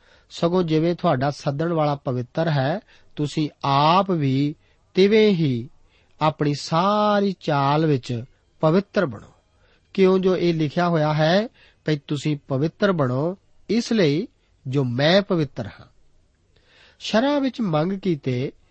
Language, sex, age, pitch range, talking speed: Punjabi, male, 50-69, 135-195 Hz, 120 wpm